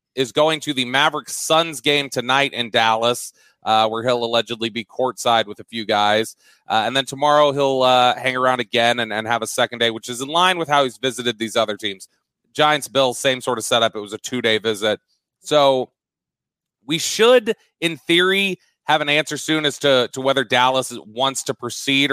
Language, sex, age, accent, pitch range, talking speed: English, male, 30-49, American, 120-150 Hz, 195 wpm